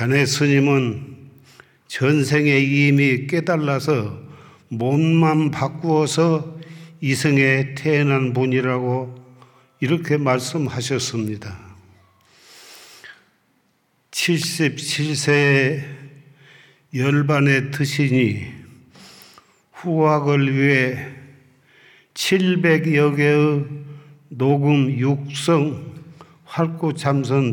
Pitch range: 130-150 Hz